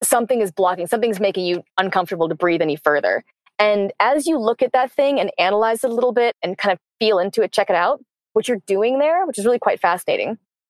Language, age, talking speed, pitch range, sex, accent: English, 20-39, 235 wpm, 175-225 Hz, female, American